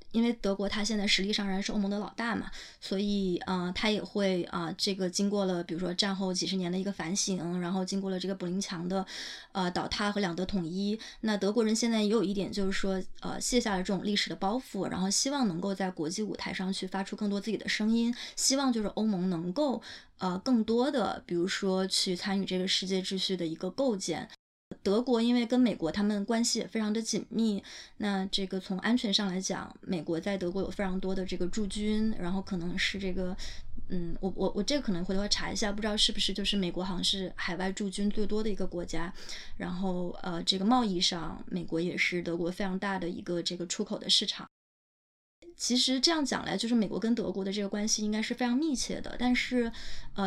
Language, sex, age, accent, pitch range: Chinese, female, 20-39, native, 185-215 Hz